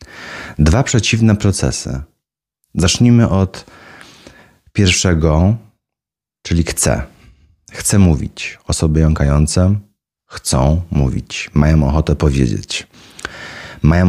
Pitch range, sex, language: 75-95 Hz, male, Polish